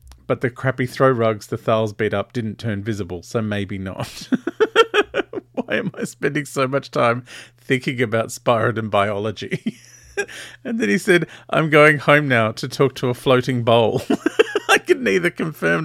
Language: English